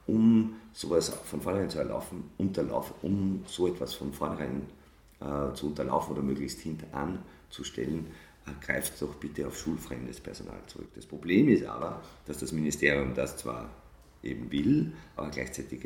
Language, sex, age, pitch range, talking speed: German, male, 50-69, 65-80 Hz, 150 wpm